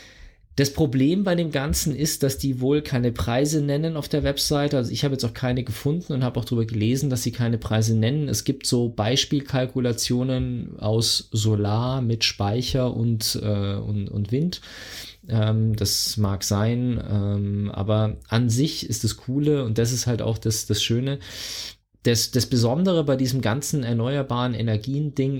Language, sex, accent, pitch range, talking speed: German, male, German, 110-135 Hz, 165 wpm